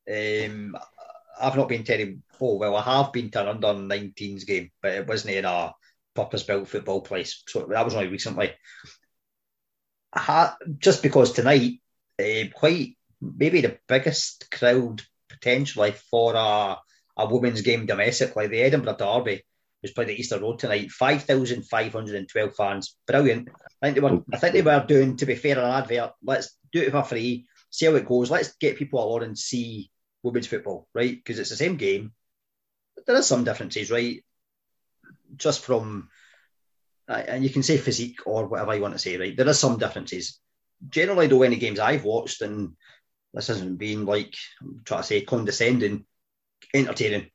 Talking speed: 175 wpm